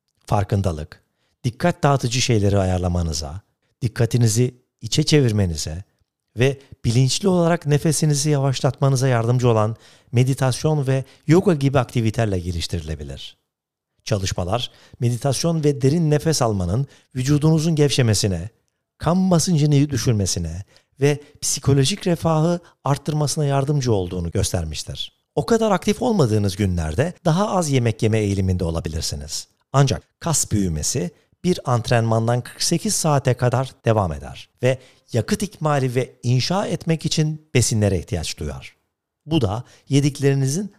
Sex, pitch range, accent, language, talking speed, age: male, 105-155 Hz, native, Turkish, 105 wpm, 50-69